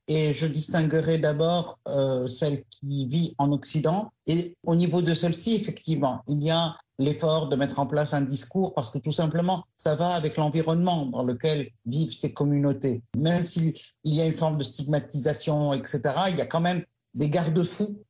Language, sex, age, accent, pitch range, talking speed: French, male, 50-69, French, 135-170 Hz, 180 wpm